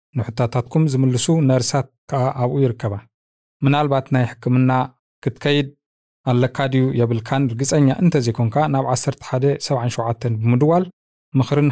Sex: male